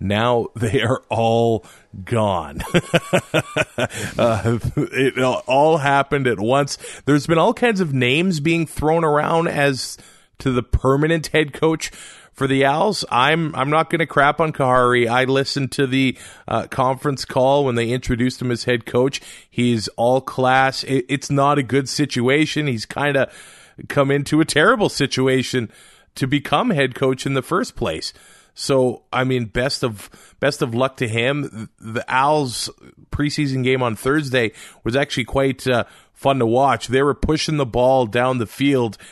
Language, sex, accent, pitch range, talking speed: English, male, American, 115-140 Hz, 165 wpm